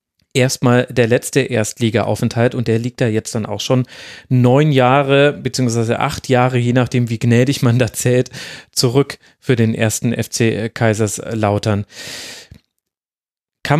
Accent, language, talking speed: German, German, 135 wpm